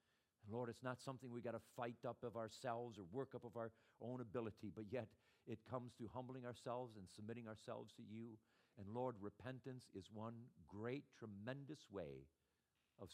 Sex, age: male, 50-69